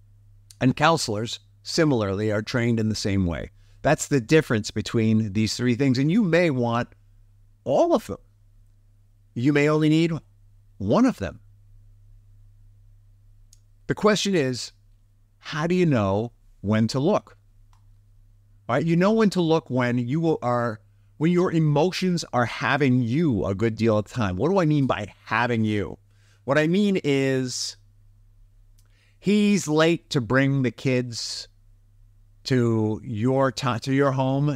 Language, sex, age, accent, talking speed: English, male, 50-69, American, 145 wpm